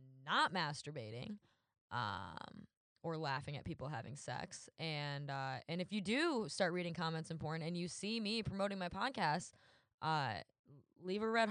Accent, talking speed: American, 160 wpm